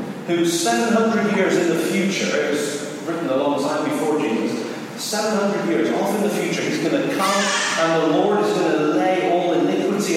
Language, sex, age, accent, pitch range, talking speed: English, male, 40-59, British, 170-225 Hz, 190 wpm